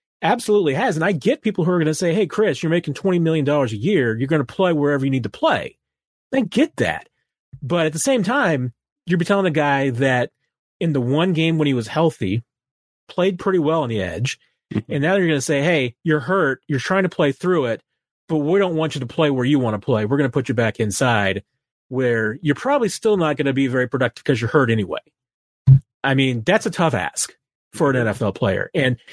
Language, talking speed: English, 240 wpm